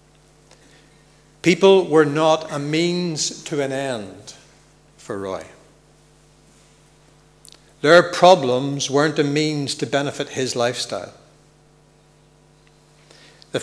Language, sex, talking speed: English, male, 90 wpm